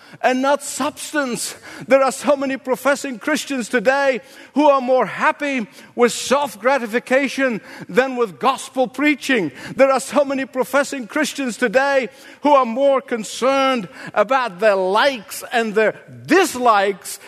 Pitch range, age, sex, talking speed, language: 210-280 Hz, 50-69, male, 130 wpm, English